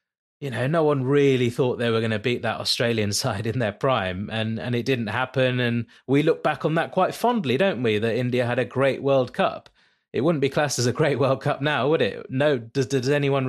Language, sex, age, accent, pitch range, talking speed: English, male, 30-49, British, 115-140 Hz, 245 wpm